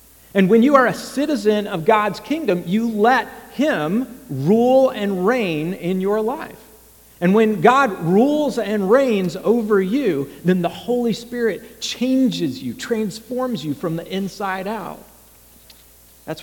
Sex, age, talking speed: male, 50-69, 145 wpm